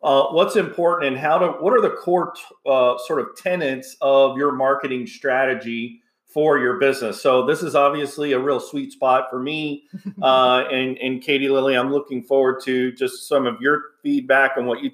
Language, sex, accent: English, male, American